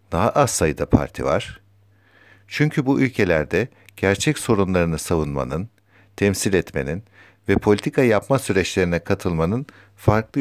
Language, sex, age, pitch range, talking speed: Turkish, male, 60-79, 90-115 Hz, 110 wpm